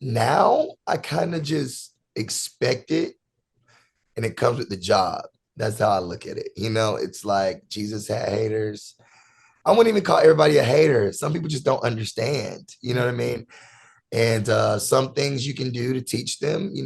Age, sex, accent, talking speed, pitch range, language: 30-49, male, American, 190 wpm, 100-120 Hz, English